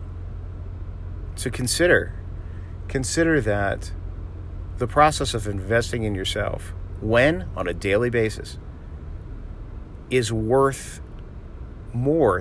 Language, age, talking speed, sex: English, 50-69, 90 wpm, male